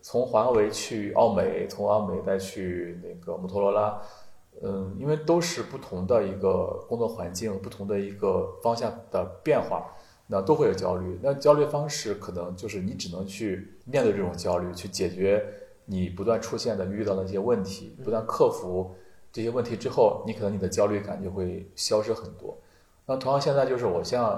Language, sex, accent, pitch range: Chinese, male, native, 95-140 Hz